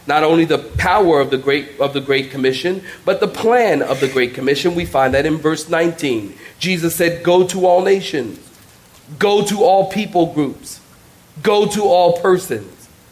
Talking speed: 170 wpm